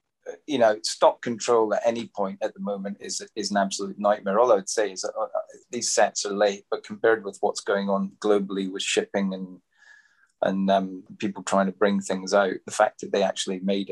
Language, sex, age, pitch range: English, male, 30-49, 95-110 Hz